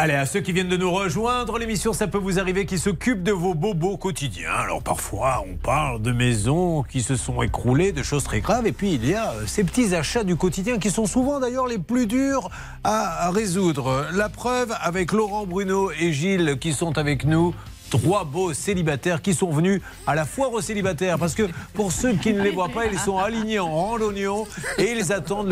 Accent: French